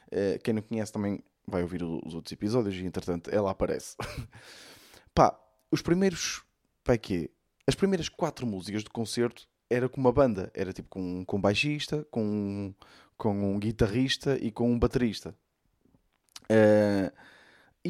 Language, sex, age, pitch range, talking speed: Portuguese, male, 20-39, 105-160 Hz, 150 wpm